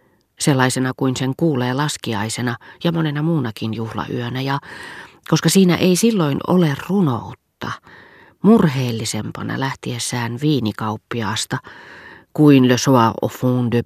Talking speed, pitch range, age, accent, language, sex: 110 wpm, 115-145 Hz, 30-49, native, Finnish, female